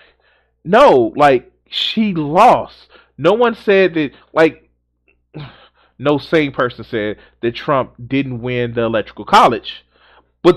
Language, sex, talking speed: English, male, 120 wpm